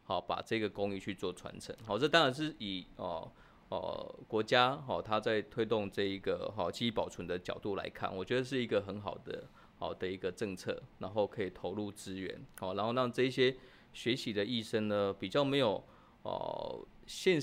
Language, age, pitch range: Chinese, 20-39, 100-125 Hz